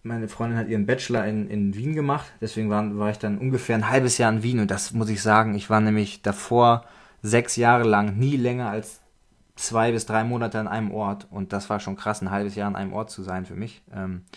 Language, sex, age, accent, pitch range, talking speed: German, male, 20-39, German, 100-115 Hz, 240 wpm